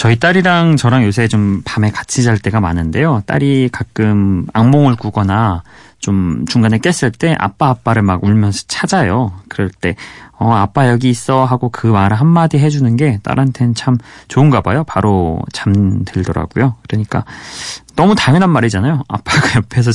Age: 30-49